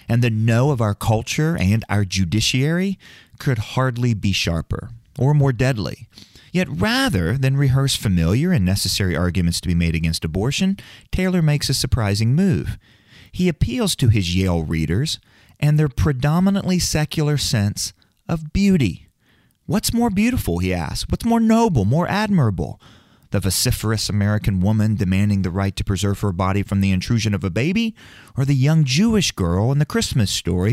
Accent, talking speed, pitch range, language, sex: American, 160 wpm, 95-145 Hz, English, male